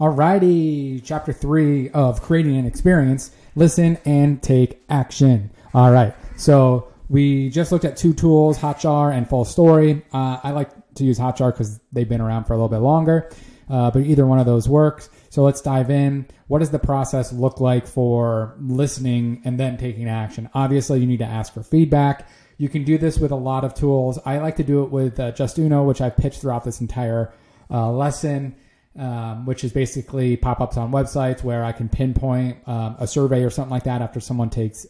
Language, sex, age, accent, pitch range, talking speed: English, male, 30-49, American, 125-145 Hz, 200 wpm